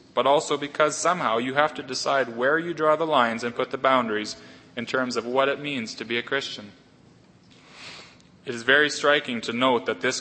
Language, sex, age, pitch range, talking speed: English, male, 30-49, 120-150 Hz, 205 wpm